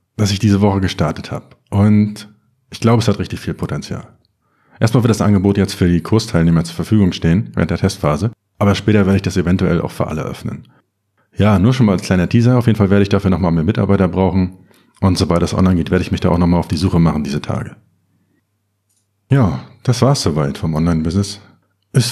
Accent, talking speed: German, 215 wpm